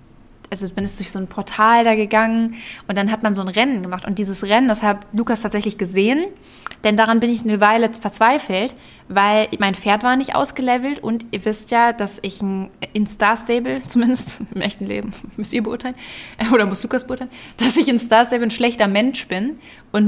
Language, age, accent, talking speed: German, 20-39, German, 205 wpm